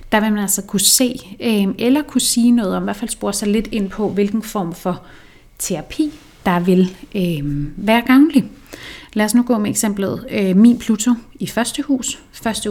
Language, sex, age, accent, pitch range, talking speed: Danish, female, 30-49, native, 175-220 Hz, 185 wpm